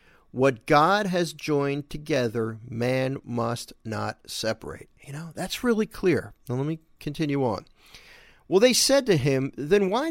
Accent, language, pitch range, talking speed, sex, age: American, English, 115-160 Hz, 155 wpm, male, 50-69